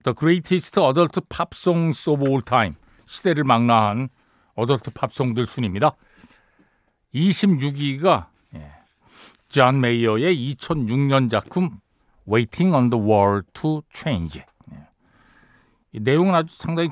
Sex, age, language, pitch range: male, 60-79, Korean, 110-170 Hz